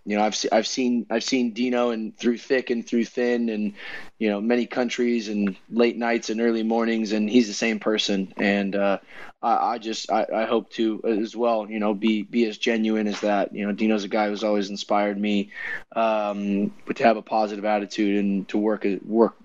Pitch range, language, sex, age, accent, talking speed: 105-115 Hz, English, male, 20-39, American, 215 wpm